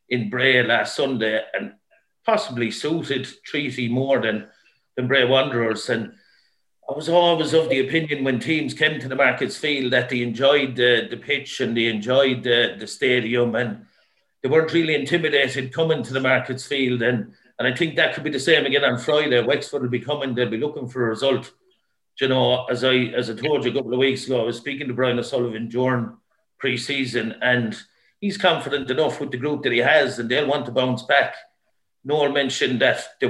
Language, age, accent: English, 50-69, British